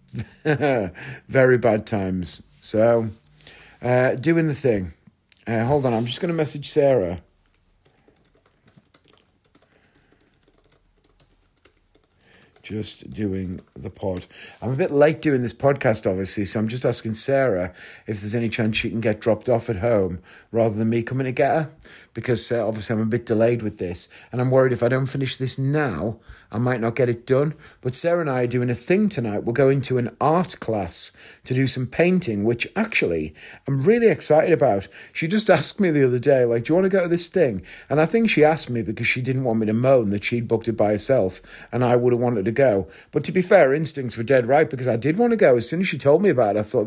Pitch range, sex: 110-145 Hz, male